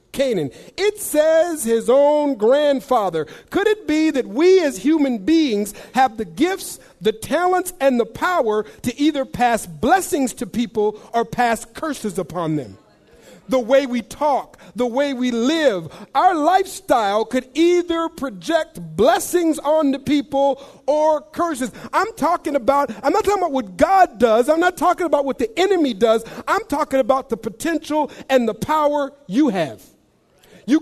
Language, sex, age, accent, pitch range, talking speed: English, male, 50-69, American, 235-315 Hz, 160 wpm